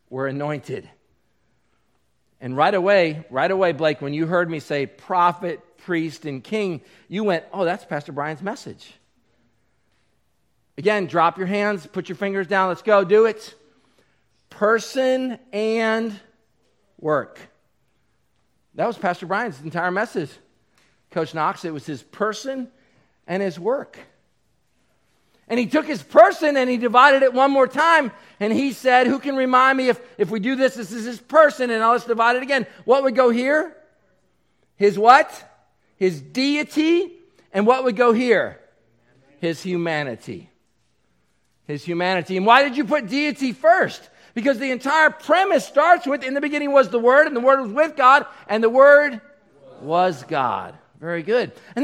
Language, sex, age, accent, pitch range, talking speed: English, male, 50-69, American, 170-270 Hz, 160 wpm